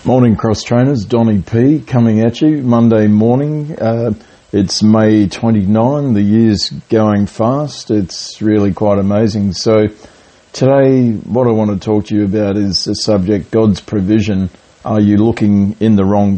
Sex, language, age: male, English, 40-59